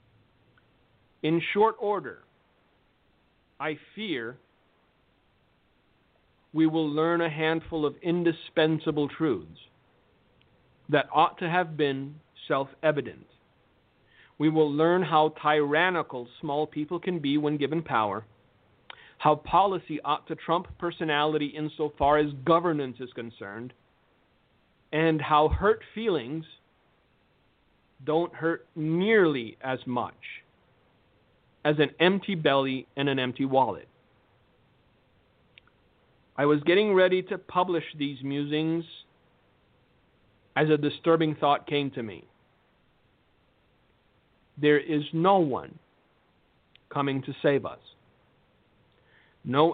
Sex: male